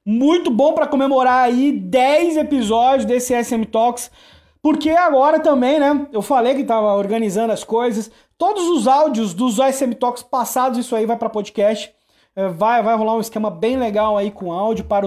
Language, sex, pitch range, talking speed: Portuguese, male, 225-280 Hz, 180 wpm